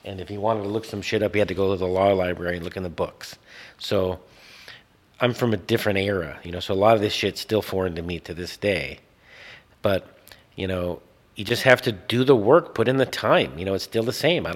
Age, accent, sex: 40-59, American, male